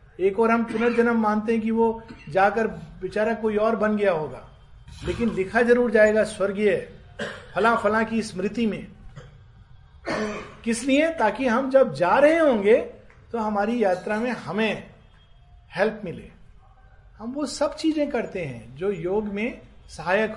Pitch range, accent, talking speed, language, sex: 155-230 Hz, native, 145 wpm, Hindi, male